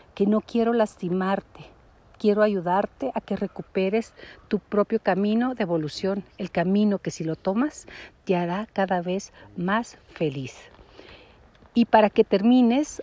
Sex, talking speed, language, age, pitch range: female, 140 wpm, Spanish, 50-69, 175-225 Hz